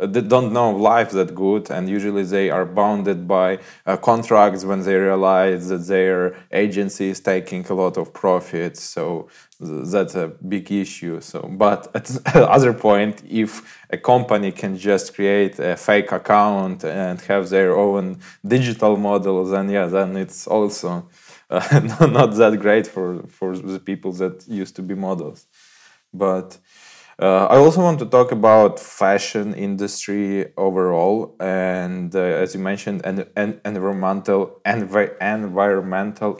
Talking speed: 155 wpm